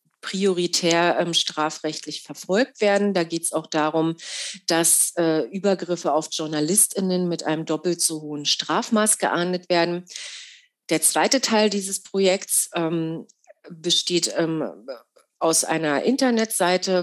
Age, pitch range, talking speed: 40-59, 155-200 Hz, 120 wpm